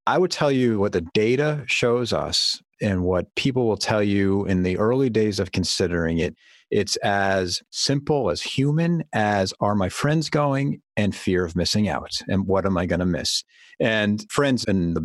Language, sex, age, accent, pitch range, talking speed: English, male, 40-59, American, 90-120 Hz, 190 wpm